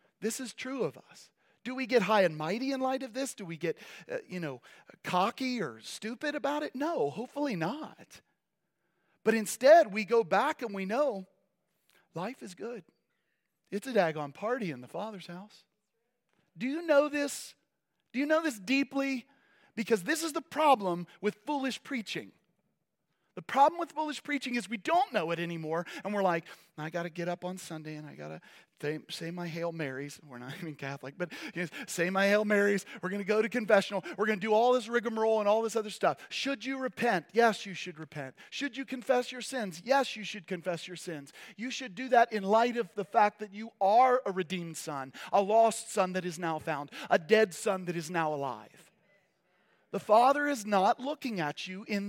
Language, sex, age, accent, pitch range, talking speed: English, male, 40-59, American, 180-255 Hz, 205 wpm